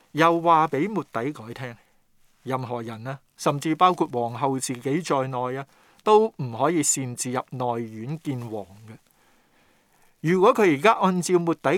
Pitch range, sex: 125-170 Hz, male